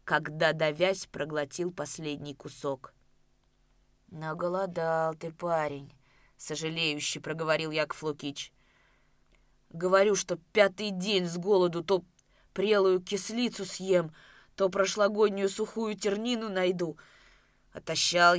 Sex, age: female, 20-39